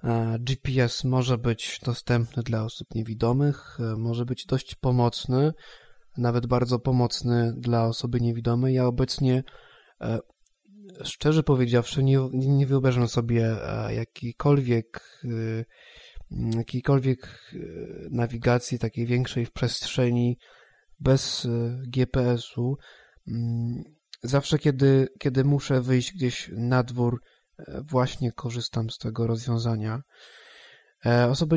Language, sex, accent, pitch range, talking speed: Polish, male, native, 120-140 Hz, 90 wpm